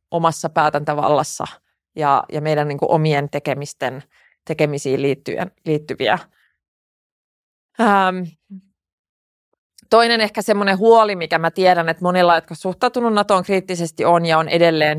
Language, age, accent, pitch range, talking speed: Finnish, 20-39, native, 150-175 Hz, 110 wpm